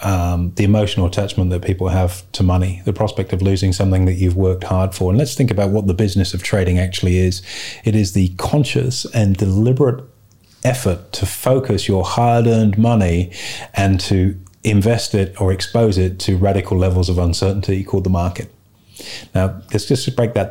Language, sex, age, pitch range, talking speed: English, male, 30-49, 95-110 Hz, 180 wpm